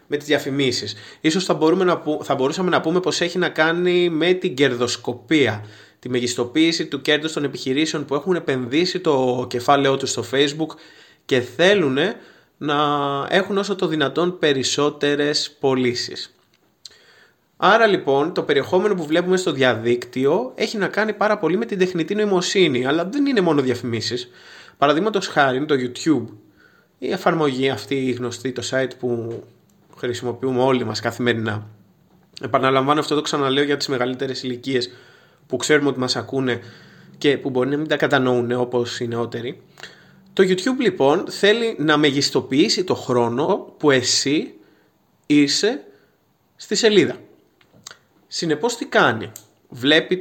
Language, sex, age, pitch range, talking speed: Greek, male, 20-39, 125-170 Hz, 140 wpm